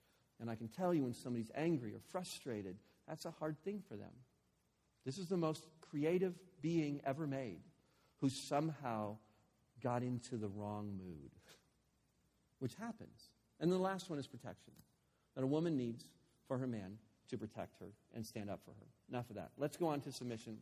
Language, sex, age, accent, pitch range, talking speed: English, male, 50-69, American, 110-155 Hz, 180 wpm